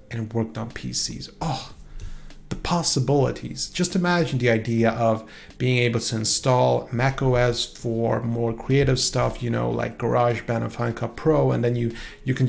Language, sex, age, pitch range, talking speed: English, male, 30-49, 115-135 Hz, 170 wpm